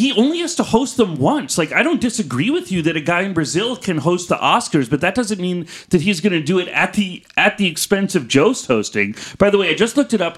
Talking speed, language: 280 wpm, English